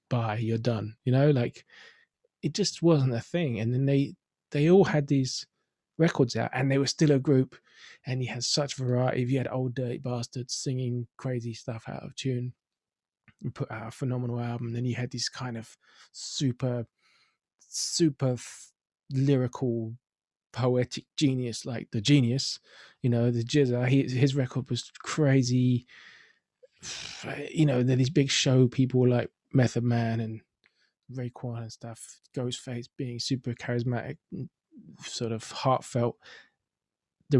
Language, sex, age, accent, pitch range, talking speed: English, male, 20-39, British, 120-140 Hz, 150 wpm